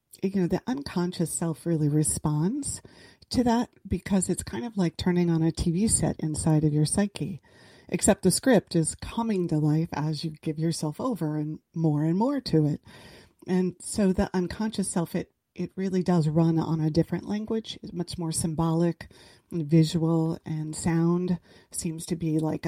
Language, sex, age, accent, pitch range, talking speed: English, female, 30-49, American, 160-185 Hz, 175 wpm